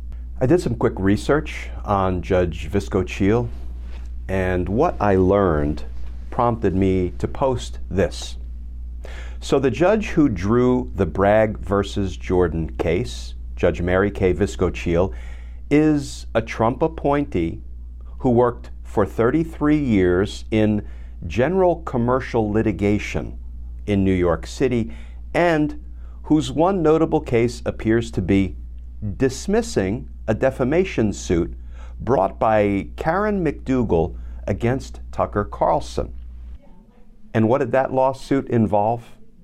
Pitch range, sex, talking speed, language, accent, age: 75-120 Hz, male, 110 wpm, English, American, 50-69